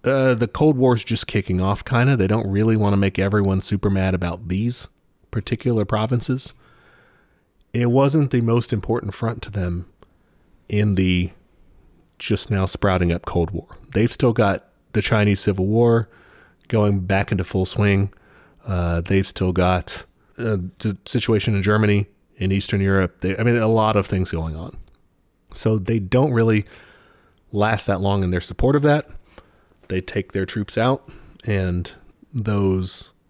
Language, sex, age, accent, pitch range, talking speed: English, male, 30-49, American, 95-115 Hz, 160 wpm